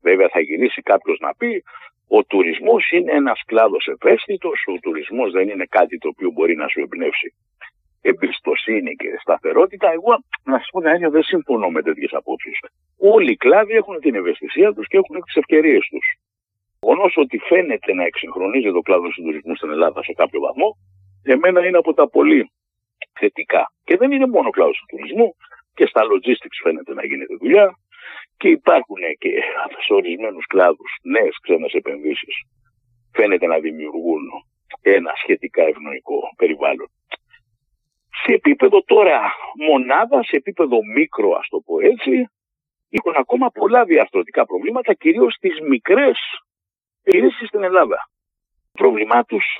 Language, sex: Greek, male